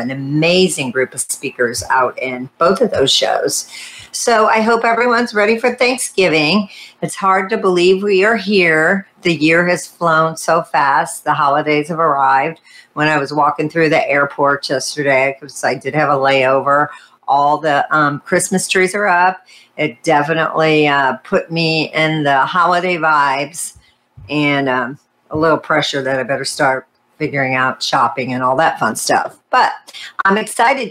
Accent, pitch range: American, 140-180 Hz